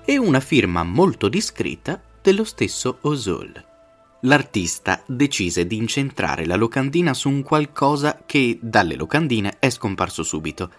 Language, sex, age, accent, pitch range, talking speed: Italian, male, 20-39, native, 85-130 Hz, 130 wpm